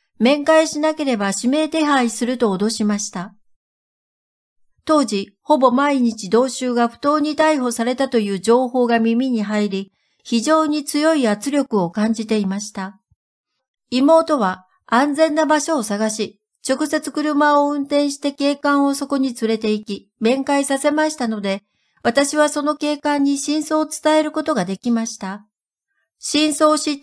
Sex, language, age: female, Japanese, 60-79